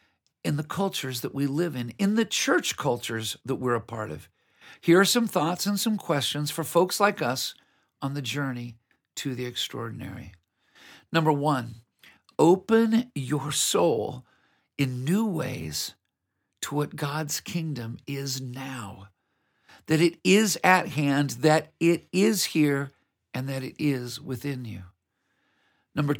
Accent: American